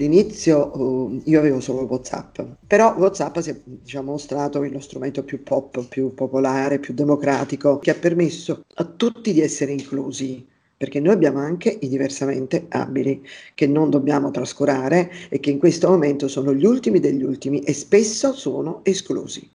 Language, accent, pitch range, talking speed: Italian, native, 140-175 Hz, 155 wpm